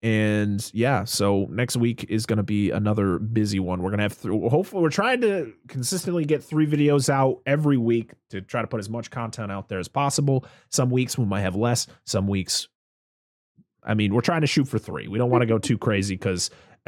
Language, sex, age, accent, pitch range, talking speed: English, male, 30-49, American, 110-165 Hz, 220 wpm